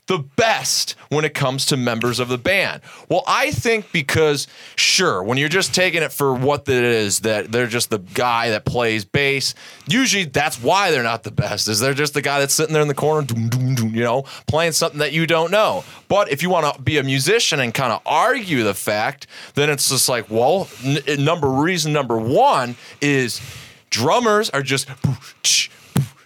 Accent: American